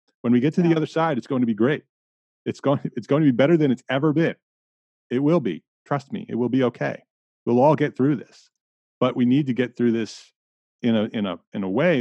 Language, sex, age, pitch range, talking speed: English, male, 30-49, 105-145 Hz, 255 wpm